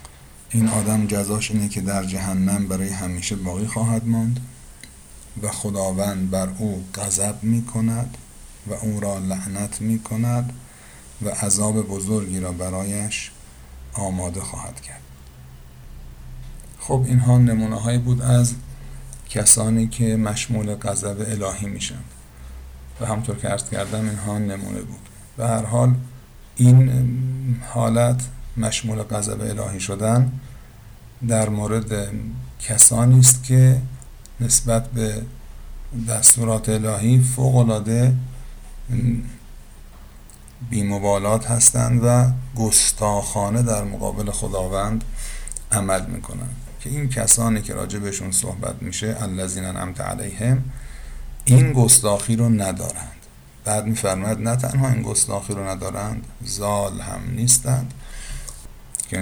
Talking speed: 105 wpm